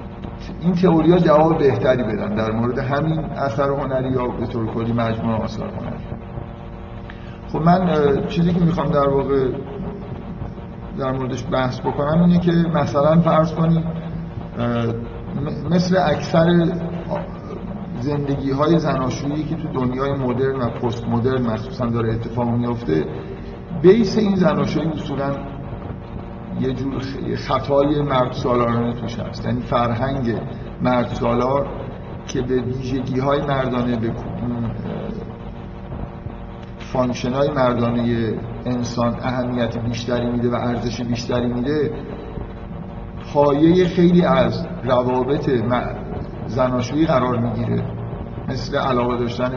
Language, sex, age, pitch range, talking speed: Persian, male, 50-69, 120-145 Hz, 105 wpm